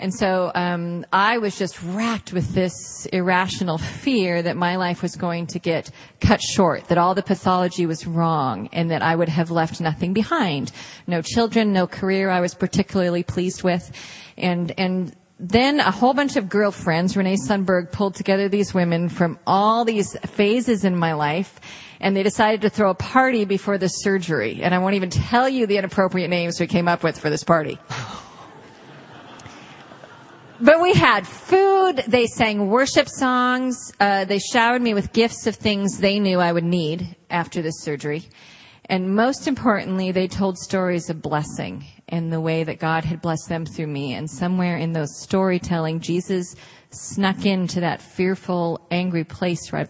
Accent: American